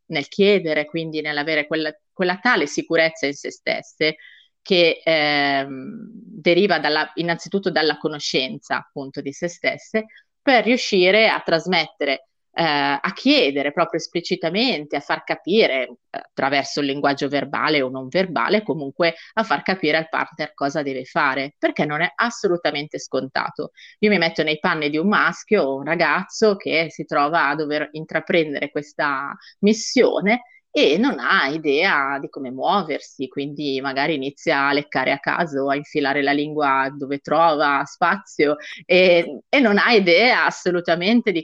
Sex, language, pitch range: female, Italian, 145-180 Hz